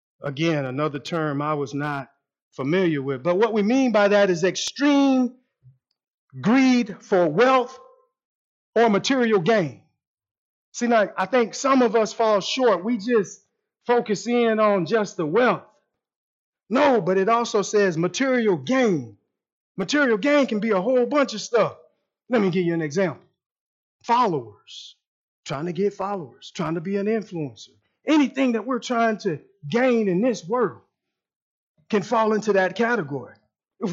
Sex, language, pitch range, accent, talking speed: male, English, 170-245 Hz, American, 150 wpm